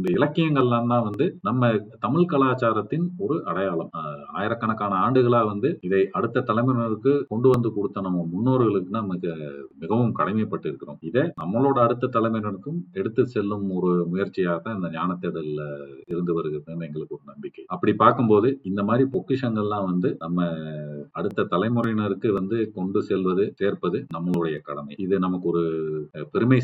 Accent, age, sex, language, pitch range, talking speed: native, 40-59, male, Tamil, 90-125 Hz, 120 wpm